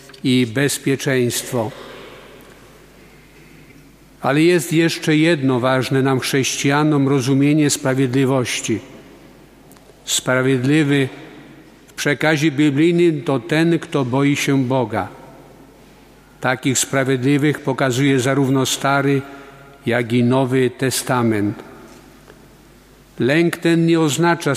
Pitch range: 130-150 Hz